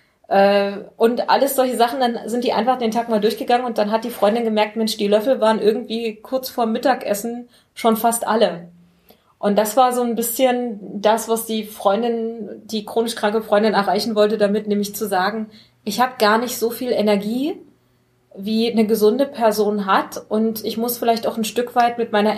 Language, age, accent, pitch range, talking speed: German, 30-49, German, 200-230 Hz, 190 wpm